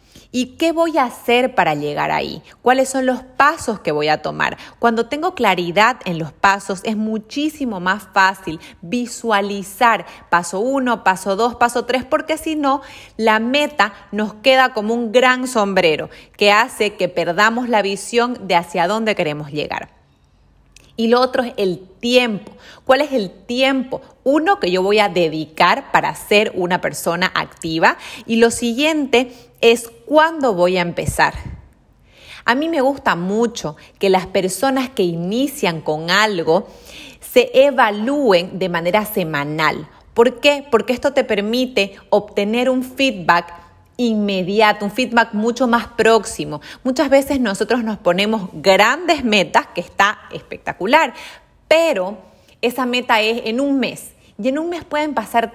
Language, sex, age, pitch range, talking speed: Spanish, female, 30-49, 195-260 Hz, 150 wpm